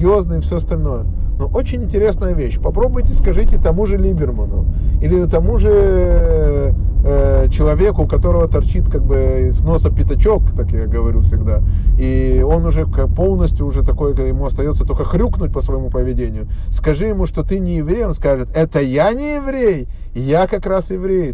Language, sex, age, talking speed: Russian, male, 20-39, 165 wpm